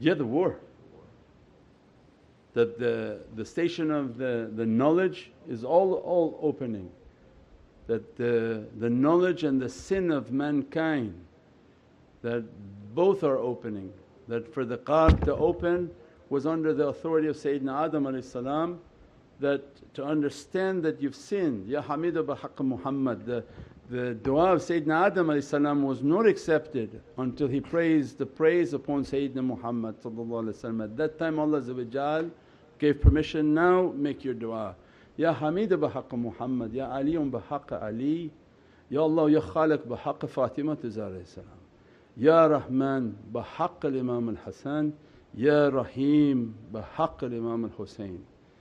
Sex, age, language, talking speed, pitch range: male, 50-69, English, 125 wpm, 115-155 Hz